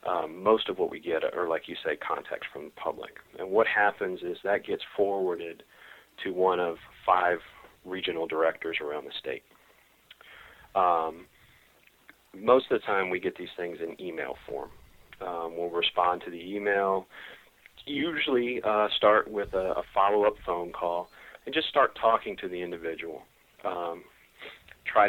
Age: 40-59